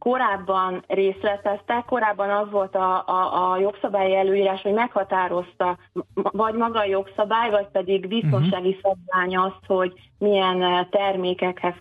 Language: Hungarian